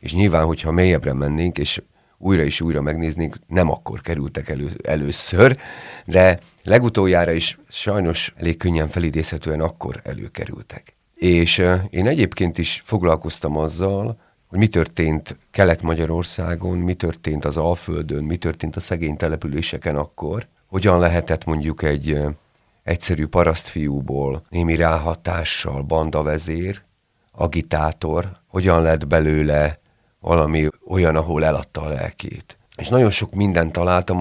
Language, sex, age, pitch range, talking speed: Hungarian, male, 40-59, 80-95 Hz, 120 wpm